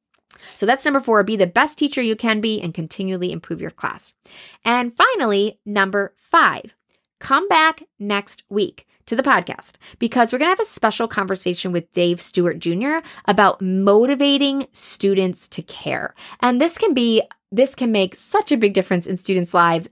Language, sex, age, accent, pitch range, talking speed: English, female, 20-39, American, 175-235 Hz, 175 wpm